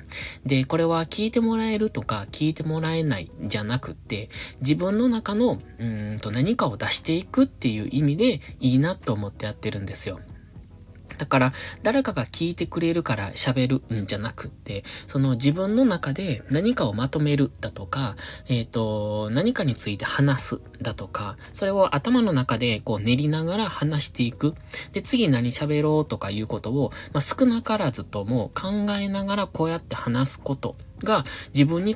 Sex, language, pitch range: male, Japanese, 105-160 Hz